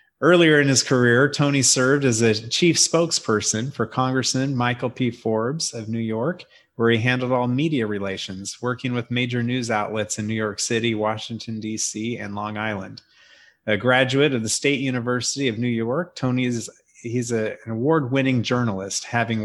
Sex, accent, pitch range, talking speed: male, American, 115-140 Hz, 170 wpm